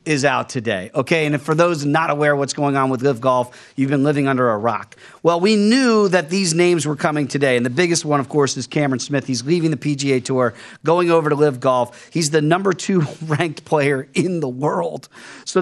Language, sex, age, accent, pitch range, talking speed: English, male, 40-59, American, 140-180 Hz, 225 wpm